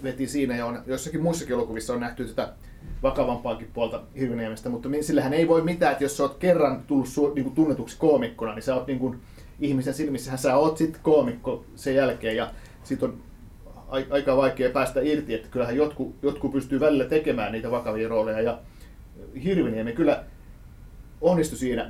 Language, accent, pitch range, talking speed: Finnish, native, 130-165 Hz, 165 wpm